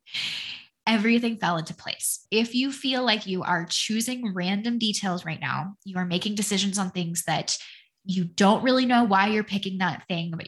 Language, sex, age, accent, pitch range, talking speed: English, female, 10-29, American, 175-215 Hz, 185 wpm